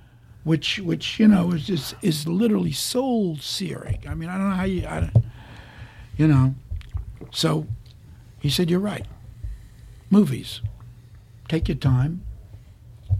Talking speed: 125 wpm